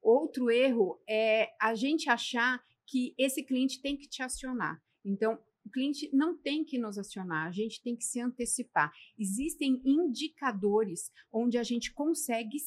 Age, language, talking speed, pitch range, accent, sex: 40-59, Portuguese, 155 wpm, 210-250 Hz, Brazilian, female